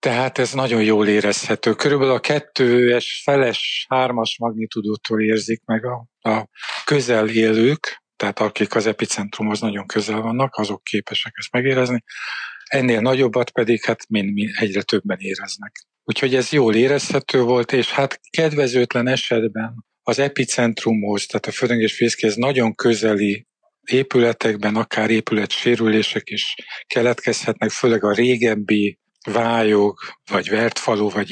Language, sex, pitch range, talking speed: Hungarian, male, 110-125 Hz, 125 wpm